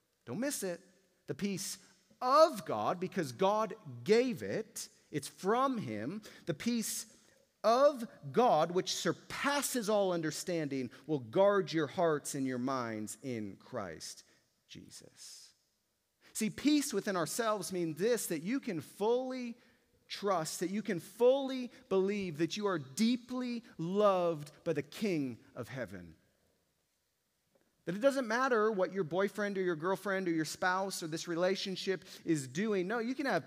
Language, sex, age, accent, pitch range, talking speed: English, male, 40-59, American, 155-220 Hz, 145 wpm